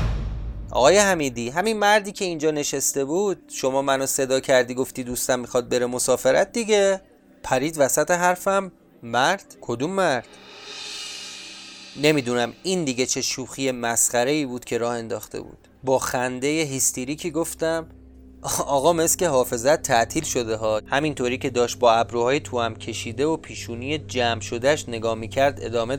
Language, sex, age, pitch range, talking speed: Persian, male, 30-49, 125-175 Hz, 140 wpm